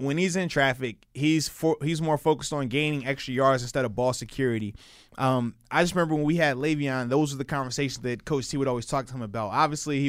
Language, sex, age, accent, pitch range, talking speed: English, male, 20-39, American, 130-160 Hz, 240 wpm